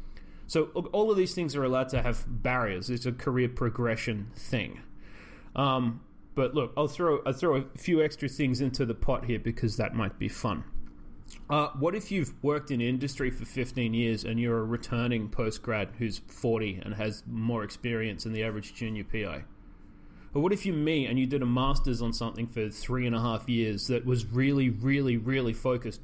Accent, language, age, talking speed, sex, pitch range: Australian, English, 30-49, 195 wpm, male, 110-140 Hz